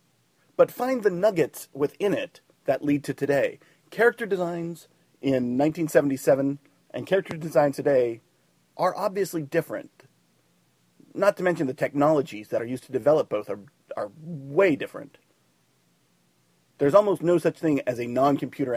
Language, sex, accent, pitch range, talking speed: English, male, American, 125-170 Hz, 140 wpm